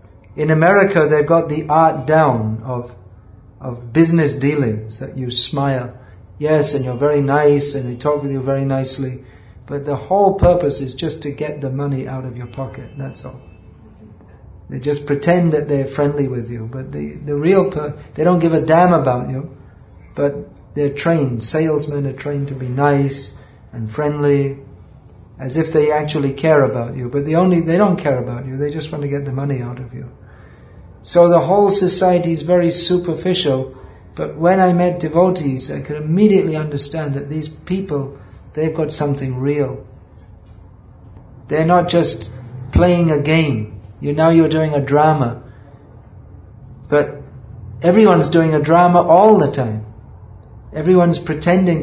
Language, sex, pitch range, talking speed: English, male, 120-155 Hz, 165 wpm